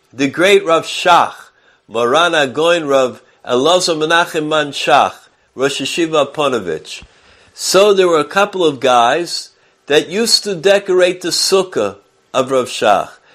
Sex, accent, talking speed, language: male, American, 125 wpm, English